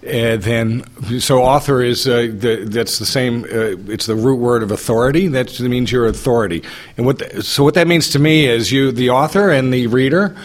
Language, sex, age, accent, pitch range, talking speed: English, male, 40-59, American, 120-145 Hz, 220 wpm